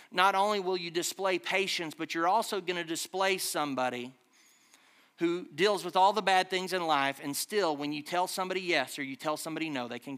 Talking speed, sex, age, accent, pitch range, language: 210 wpm, male, 40-59, American, 150-190 Hz, English